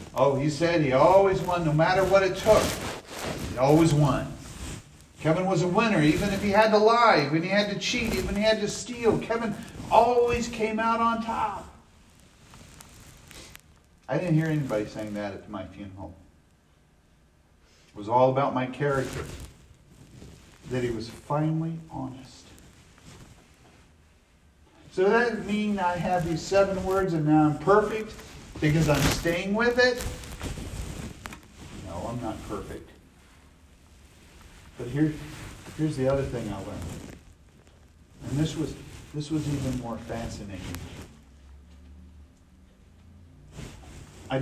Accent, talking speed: American, 135 wpm